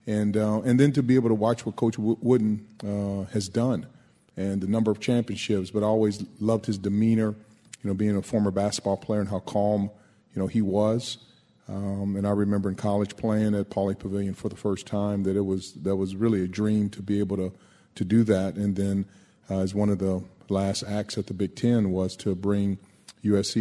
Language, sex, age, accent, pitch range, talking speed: English, male, 40-59, American, 95-110 Hz, 220 wpm